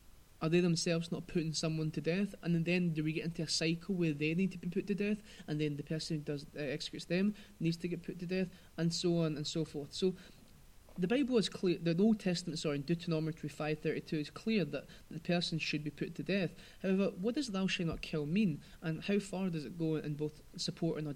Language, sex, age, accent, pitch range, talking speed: English, male, 20-39, British, 150-180 Hz, 240 wpm